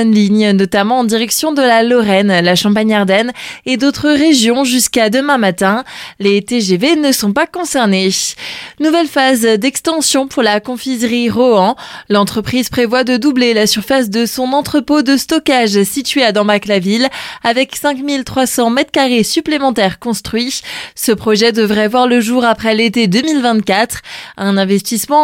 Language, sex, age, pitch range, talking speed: French, female, 20-39, 210-270 Hz, 140 wpm